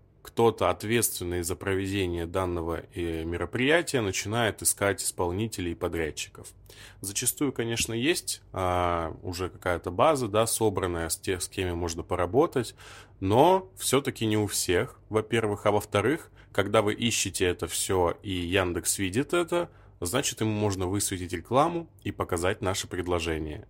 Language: Russian